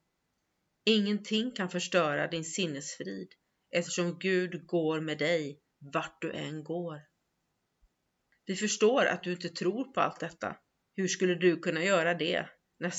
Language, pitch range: Swedish, 155-185 Hz